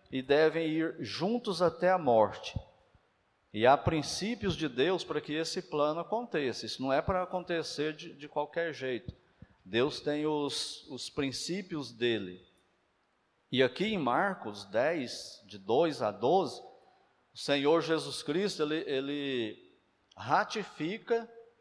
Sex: male